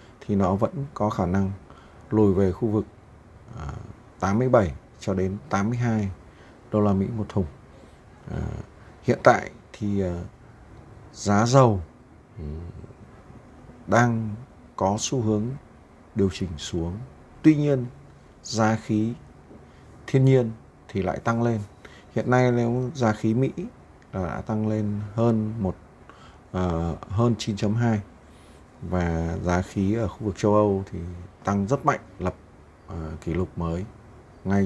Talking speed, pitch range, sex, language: 125 wpm, 85-110 Hz, male, Vietnamese